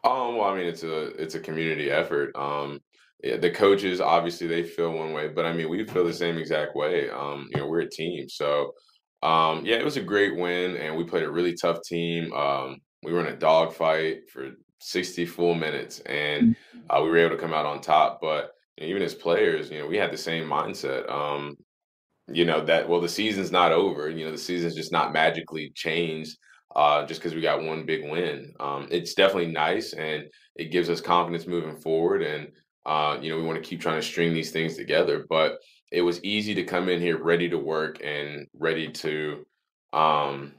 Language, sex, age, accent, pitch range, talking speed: English, male, 20-39, American, 75-85 Hz, 215 wpm